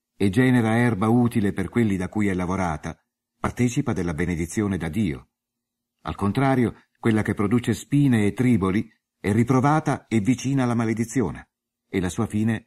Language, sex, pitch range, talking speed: Italian, male, 95-120 Hz, 155 wpm